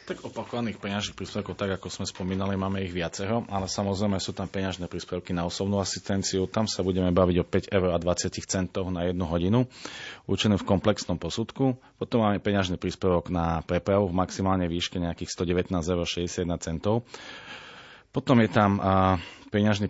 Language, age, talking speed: Slovak, 30-49, 155 wpm